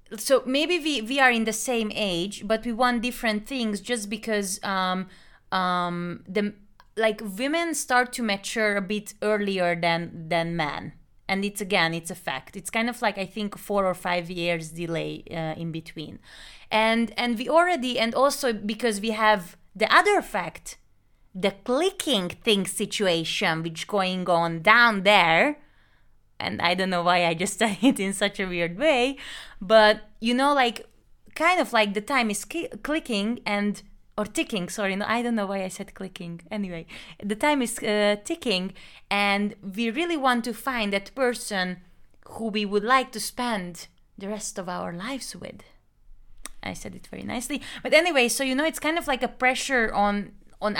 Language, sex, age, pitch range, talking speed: Hungarian, female, 20-39, 190-245 Hz, 180 wpm